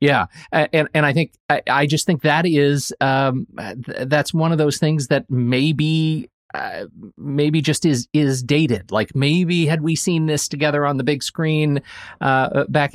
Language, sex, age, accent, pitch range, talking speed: English, male, 30-49, American, 110-150 Hz, 170 wpm